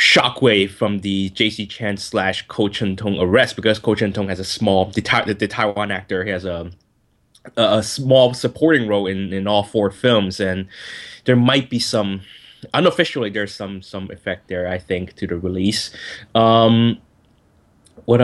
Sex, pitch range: male, 95-120 Hz